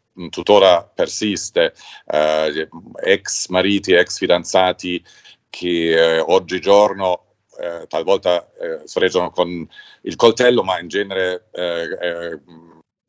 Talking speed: 100 wpm